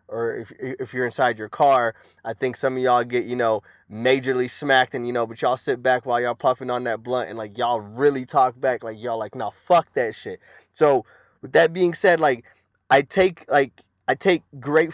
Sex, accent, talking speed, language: male, American, 225 wpm, English